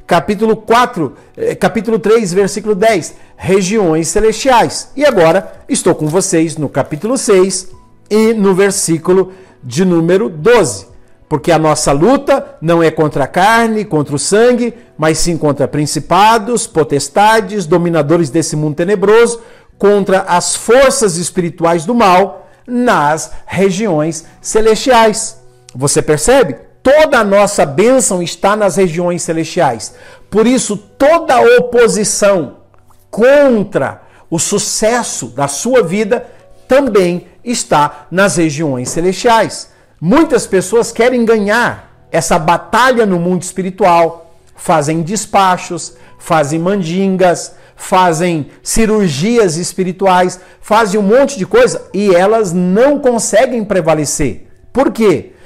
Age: 50-69